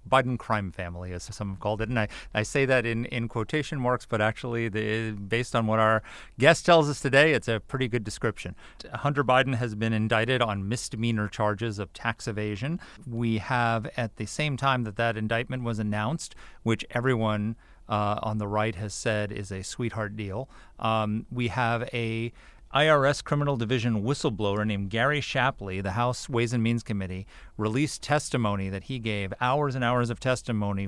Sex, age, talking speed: male, 40-59, 180 wpm